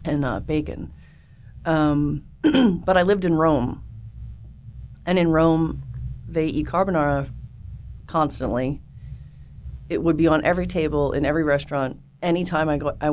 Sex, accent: female, American